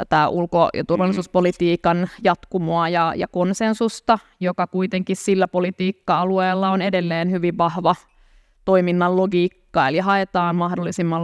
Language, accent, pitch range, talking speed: Finnish, native, 175-195 Hz, 110 wpm